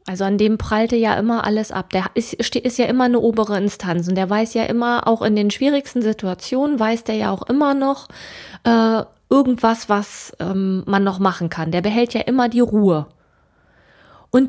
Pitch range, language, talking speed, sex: 175-230 Hz, German, 195 wpm, female